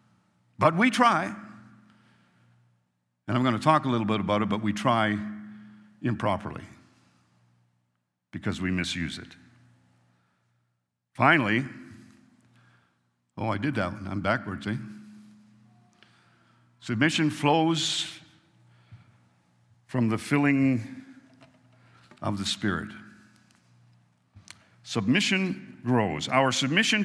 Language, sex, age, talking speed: English, male, 60-79, 95 wpm